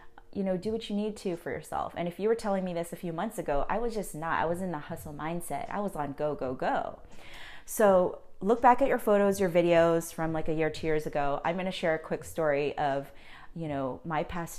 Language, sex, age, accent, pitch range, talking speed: English, female, 30-49, American, 150-175 Hz, 255 wpm